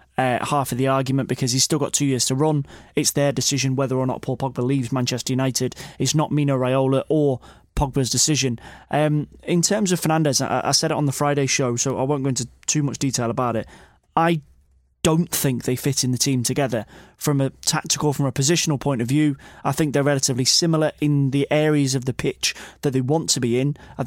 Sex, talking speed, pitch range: male, 225 wpm, 130-150 Hz